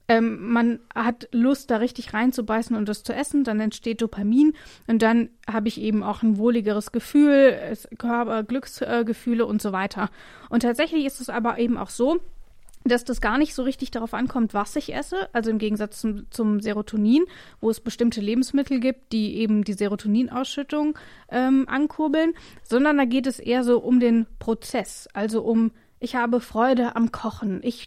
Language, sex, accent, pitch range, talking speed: German, female, German, 215-250 Hz, 170 wpm